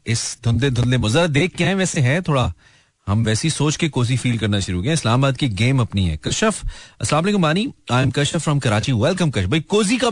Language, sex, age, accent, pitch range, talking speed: Hindi, male, 40-59, native, 110-165 Hz, 165 wpm